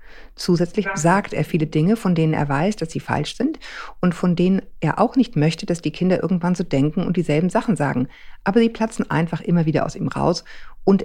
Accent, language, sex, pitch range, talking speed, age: German, German, female, 150-180 Hz, 215 wpm, 50-69